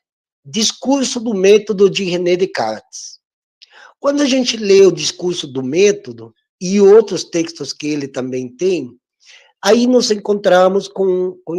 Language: Portuguese